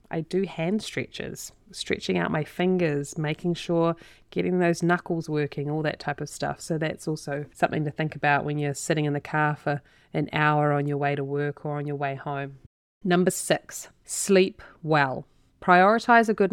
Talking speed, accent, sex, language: 190 wpm, Australian, female, English